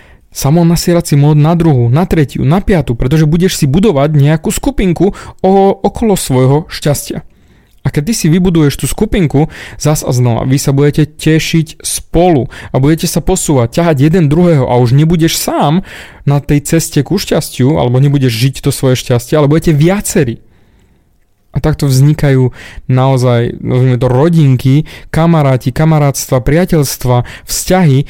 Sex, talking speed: male, 150 wpm